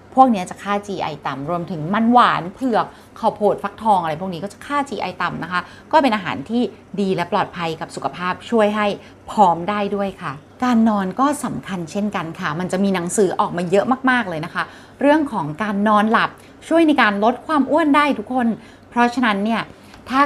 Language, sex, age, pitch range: Thai, female, 30-49, 180-230 Hz